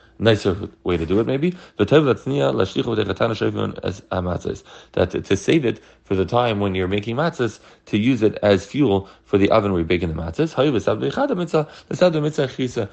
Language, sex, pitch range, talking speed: English, male, 90-115 Hz, 140 wpm